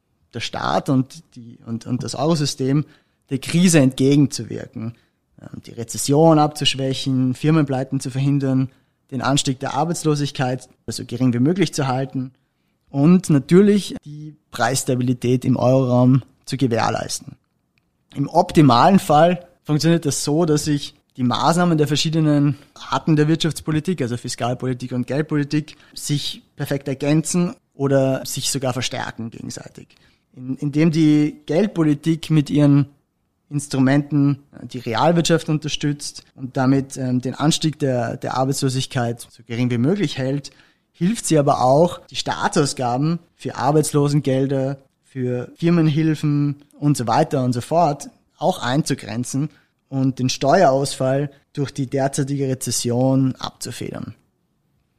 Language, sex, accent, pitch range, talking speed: German, male, German, 130-150 Hz, 120 wpm